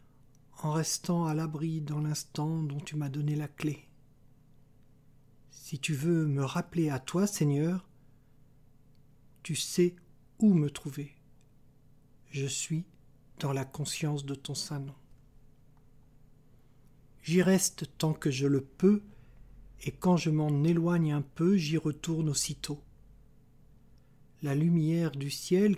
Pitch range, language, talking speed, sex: 135-165 Hz, French, 125 wpm, male